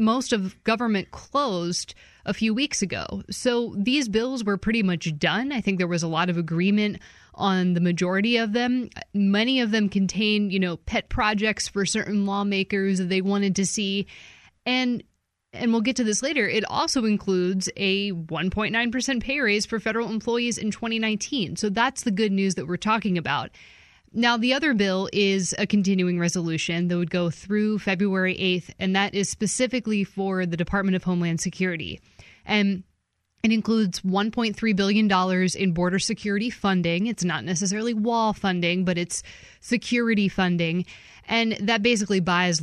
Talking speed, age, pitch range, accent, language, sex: 165 wpm, 20-39, 180-220 Hz, American, English, female